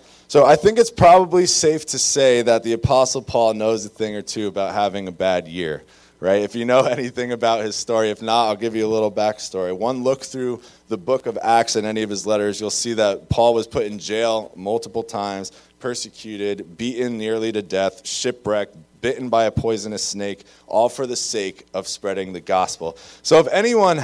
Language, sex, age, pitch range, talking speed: English, male, 20-39, 105-125 Hz, 205 wpm